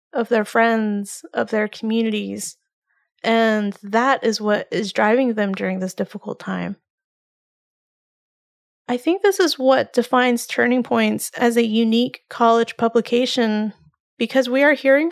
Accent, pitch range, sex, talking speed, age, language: American, 215-250 Hz, female, 135 wpm, 30-49, English